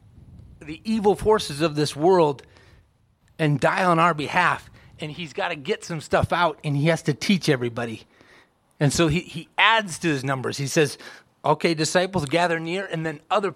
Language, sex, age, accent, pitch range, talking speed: English, male, 30-49, American, 125-170 Hz, 185 wpm